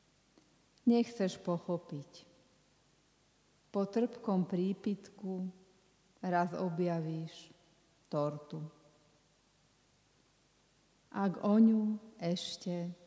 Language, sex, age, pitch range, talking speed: Slovak, female, 50-69, 160-195 Hz, 55 wpm